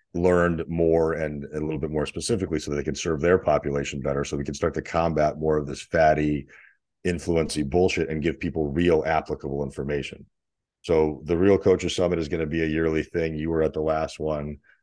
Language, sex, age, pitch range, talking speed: English, male, 40-59, 75-85 Hz, 205 wpm